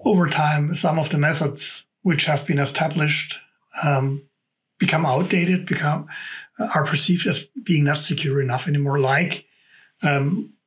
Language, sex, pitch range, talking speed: English, male, 140-180 Hz, 140 wpm